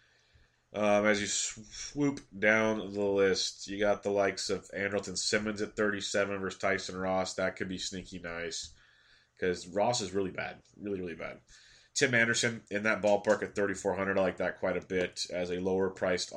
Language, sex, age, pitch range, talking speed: English, male, 20-39, 90-105 Hz, 175 wpm